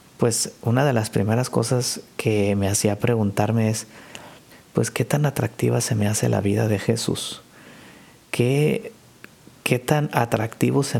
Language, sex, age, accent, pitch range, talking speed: Spanish, male, 50-69, Mexican, 110-145 Hz, 145 wpm